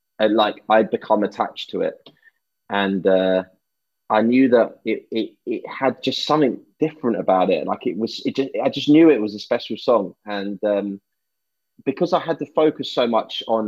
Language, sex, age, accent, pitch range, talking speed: Finnish, male, 20-39, British, 115-150 Hz, 195 wpm